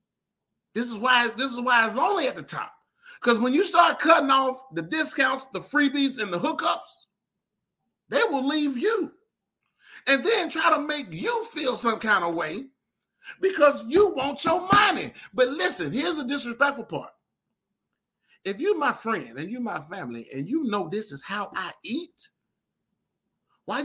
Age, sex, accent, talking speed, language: 40-59, male, American, 170 wpm, English